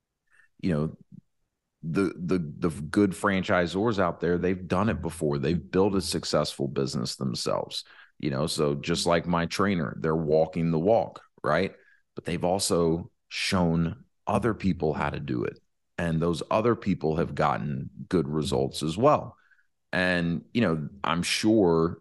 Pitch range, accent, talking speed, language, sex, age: 75-90 Hz, American, 155 wpm, English, male, 30-49